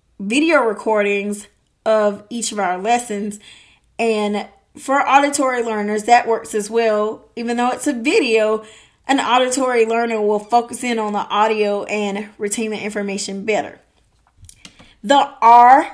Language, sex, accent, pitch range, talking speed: English, female, American, 210-240 Hz, 135 wpm